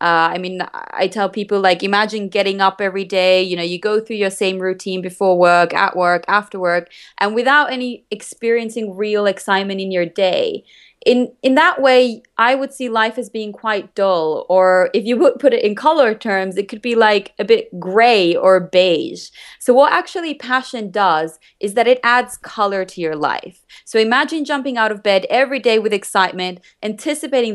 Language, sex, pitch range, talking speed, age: English, female, 190-240 Hz, 195 wpm, 20-39